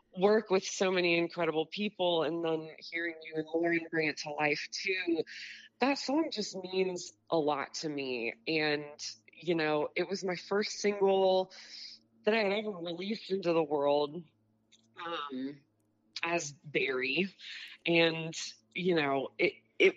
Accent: American